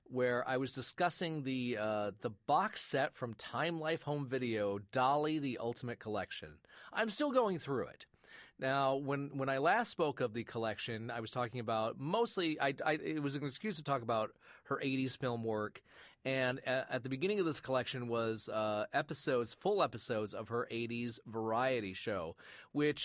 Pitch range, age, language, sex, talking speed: 115-150 Hz, 30-49, English, male, 180 wpm